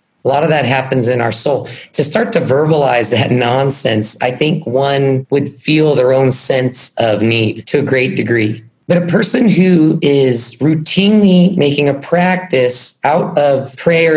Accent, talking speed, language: American, 170 wpm, English